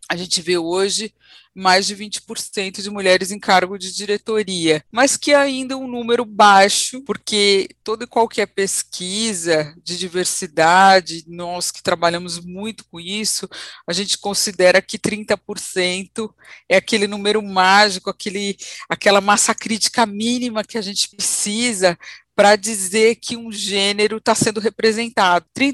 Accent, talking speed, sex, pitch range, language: Brazilian, 135 wpm, female, 180-220 Hz, Portuguese